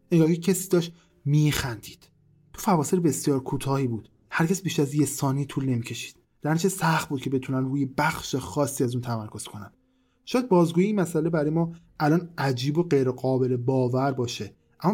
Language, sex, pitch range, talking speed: Persian, male, 120-150 Hz, 175 wpm